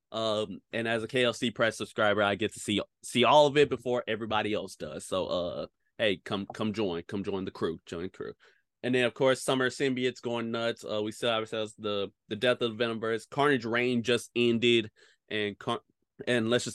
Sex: male